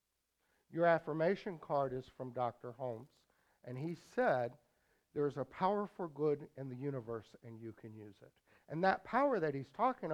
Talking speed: 180 wpm